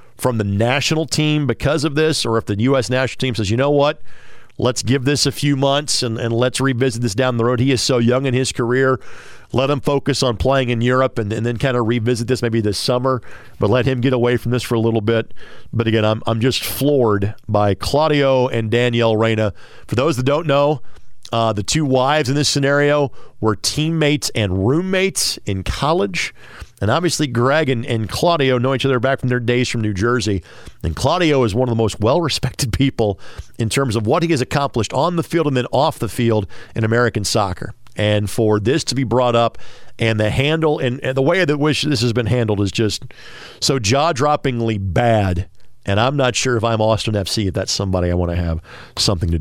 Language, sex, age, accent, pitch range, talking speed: English, male, 40-59, American, 115-145 Hz, 215 wpm